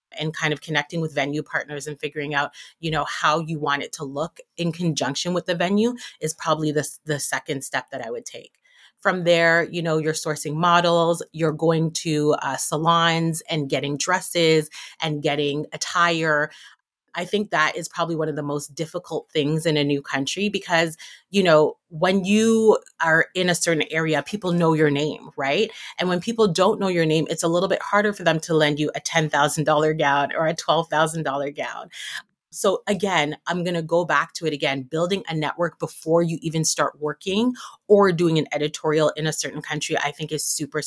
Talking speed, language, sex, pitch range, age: 195 wpm, English, female, 150-175 Hz, 30-49